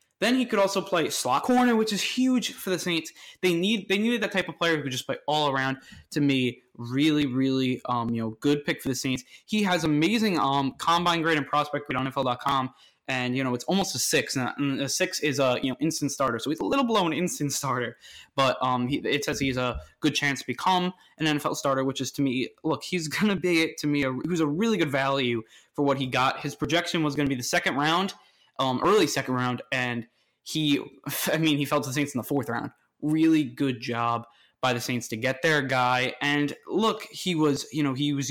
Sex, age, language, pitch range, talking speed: male, 20-39, English, 130-170 Hz, 235 wpm